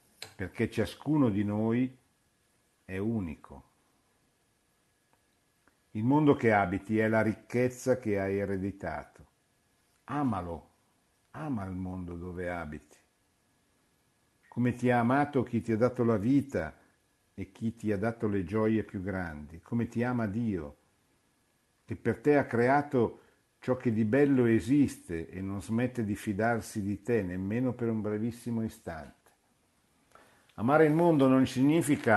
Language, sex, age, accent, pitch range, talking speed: Italian, male, 50-69, native, 95-120 Hz, 135 wpm